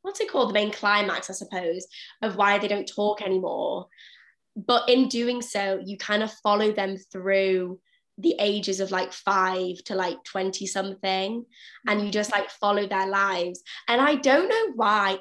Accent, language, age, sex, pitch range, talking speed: British, English, 20-39, female, 195-230 Hz, 180 wpm